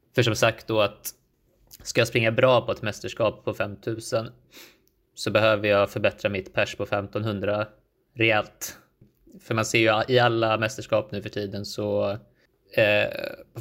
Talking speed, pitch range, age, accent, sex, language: 160 wpm, 105-115 Hz, 20-39, native, male, Swedish